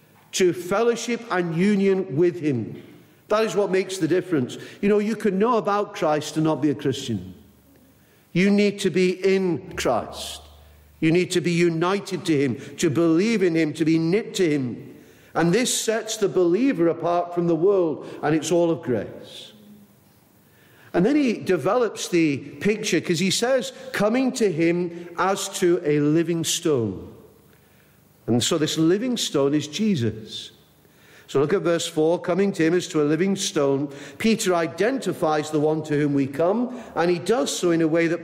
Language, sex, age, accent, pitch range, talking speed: English, male, 50-69, British, 155-195 Hz, 175 wpm